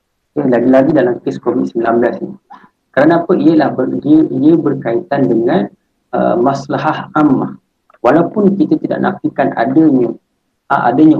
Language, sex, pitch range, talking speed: Malay, male, 120-160 Hz, 130 wpm